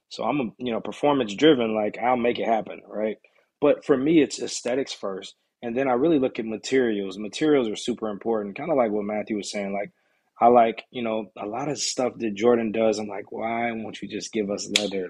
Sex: male